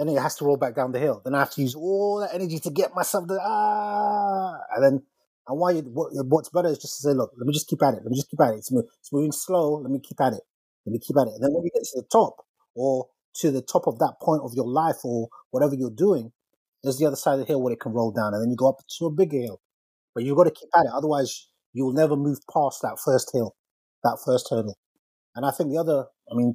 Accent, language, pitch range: British, English, 125-160 Hz